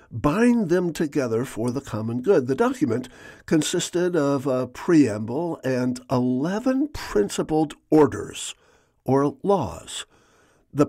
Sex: male